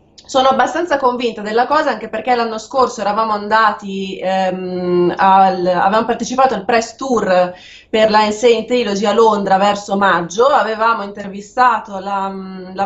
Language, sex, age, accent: Italian, female, 20-39, native